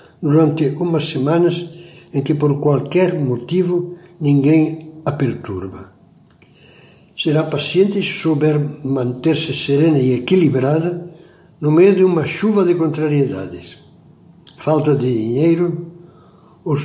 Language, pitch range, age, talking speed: Portuguese, 135-170 Hz, 60-79, 105 wpm